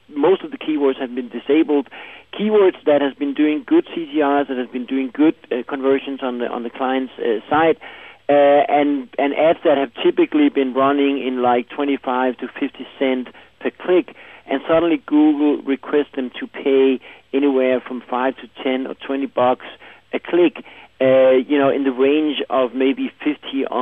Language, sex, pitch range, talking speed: English, male, 130-150 Hz, 180 wpm